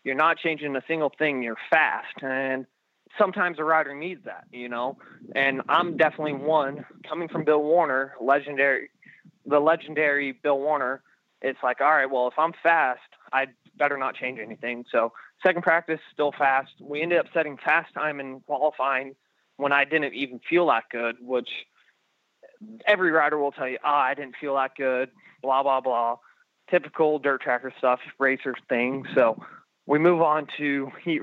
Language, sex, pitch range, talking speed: English, male, 130-155 Hz, 170 wpm